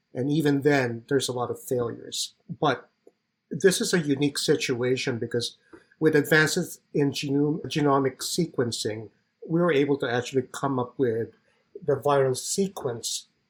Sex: male